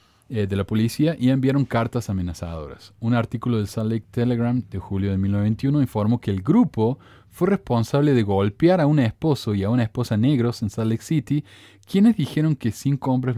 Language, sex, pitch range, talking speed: Spanish, male, 100-135 Hz, 190 wpm